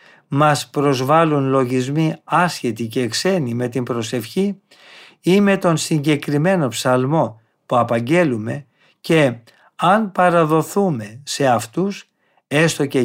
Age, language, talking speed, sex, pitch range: 50-69, Greek, 105 wpm, male, 125-175 Hz